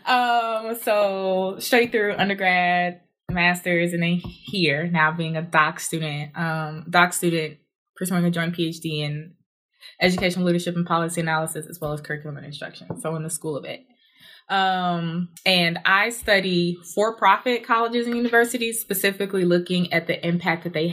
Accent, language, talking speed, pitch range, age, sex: American, English, 155 wpm, 160-195 Hz, 20-39, female